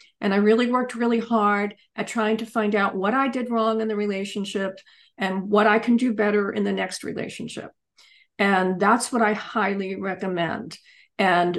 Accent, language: American, English